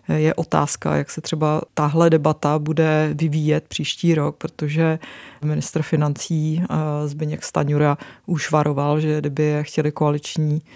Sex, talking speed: female, 125 wpm